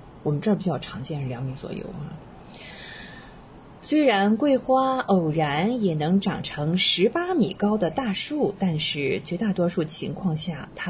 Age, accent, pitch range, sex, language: 20-39, native, 155-210 Hz, female, Chinese